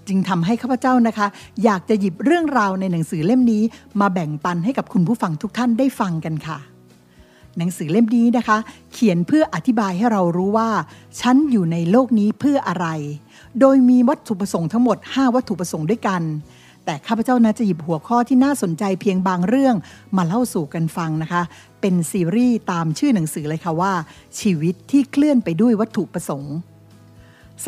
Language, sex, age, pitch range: Thai, female, 60-79, 170-240 Hz